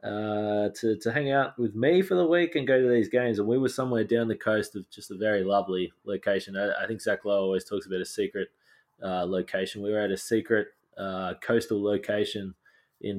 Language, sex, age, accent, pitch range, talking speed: English, male, 20-39, Australian, 100-120 Hz, 225 wpm